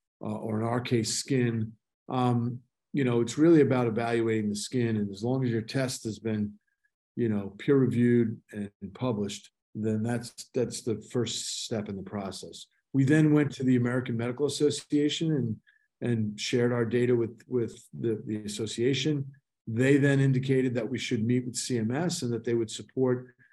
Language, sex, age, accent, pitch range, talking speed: English, male, 50-69, American, 115-135 Hz, 175 wpm